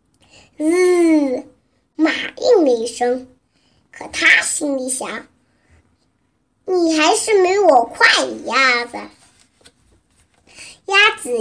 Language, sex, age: Chinese, male, 50-69